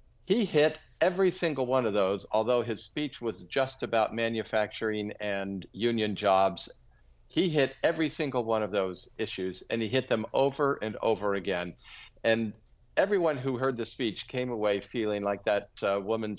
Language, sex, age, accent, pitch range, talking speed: English, male, 50-69, American, 105-130 Hz, 170 wpm